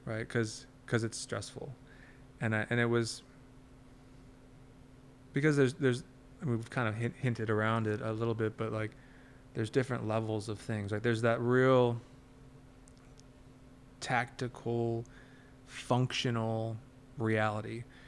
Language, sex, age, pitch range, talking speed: English, male, 20-39, 115-130 Hz, 125 wpm